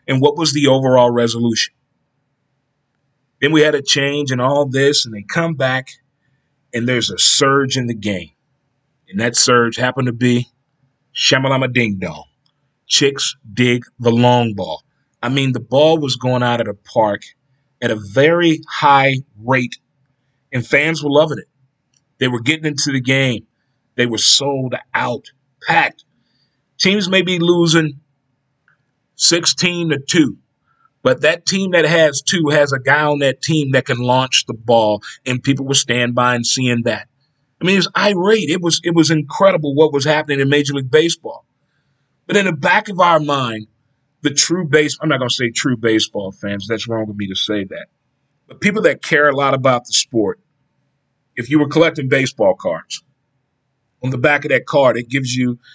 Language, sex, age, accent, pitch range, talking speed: English, male, 30-49, American, 125-150 Hz, 180 wpm